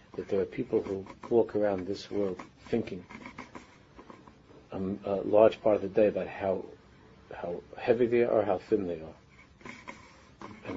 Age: 50-69